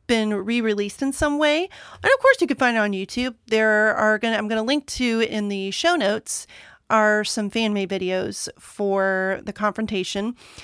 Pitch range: 205-245 Hz